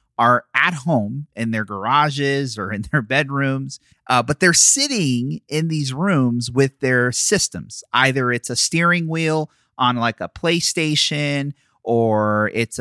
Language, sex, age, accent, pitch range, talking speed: English, male, 30-49, American, 100-130 Hz, 145 wpm